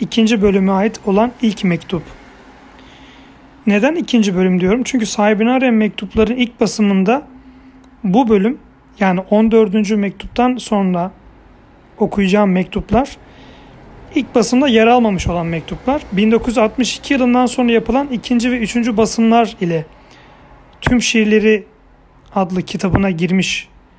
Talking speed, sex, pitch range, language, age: 110 wpm, male, 160-225 Hz, Turkish, 40-59